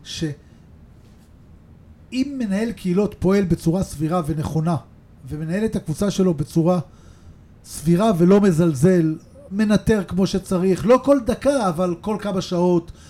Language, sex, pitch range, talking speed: Hebrew, male, 170-225 Hz, 115 wpm